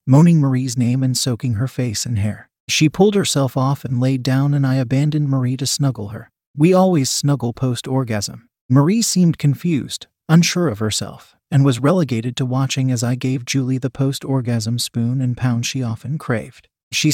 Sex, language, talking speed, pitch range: male, English, 180 wpm, 120-150 Hz